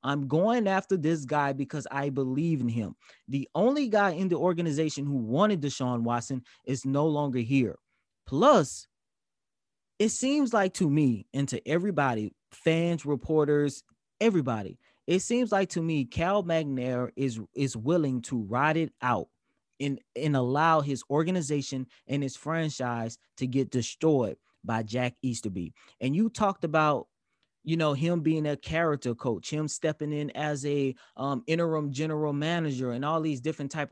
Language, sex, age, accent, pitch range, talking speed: English, male, 20-39, American, 130-175 Hz, 155 wpm